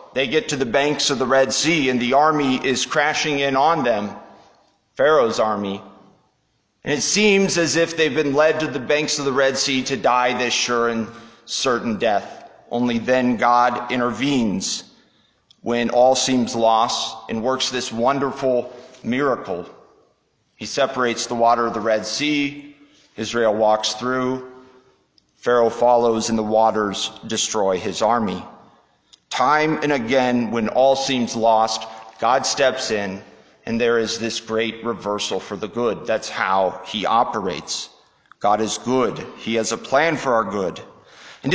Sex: male